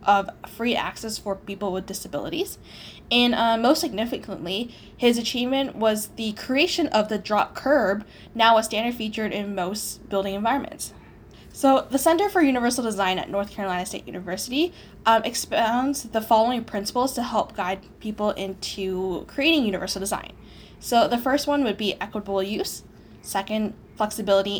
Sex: female